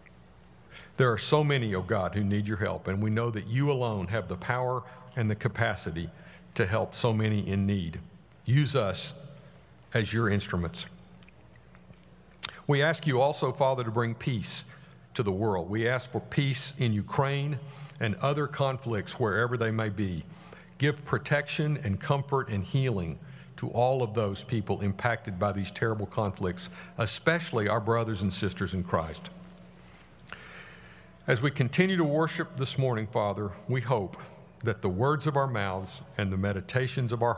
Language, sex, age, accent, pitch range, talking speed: English, male, 60-79, American, 100-135 Hz, 165 wpm